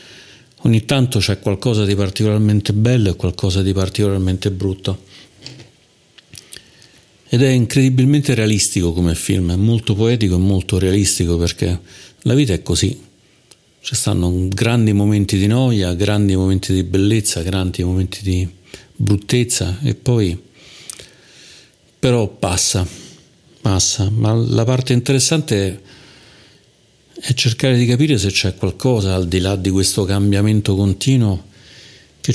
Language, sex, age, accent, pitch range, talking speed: Italian, male, 50-69, native, 95-120 Hz, 125 wpm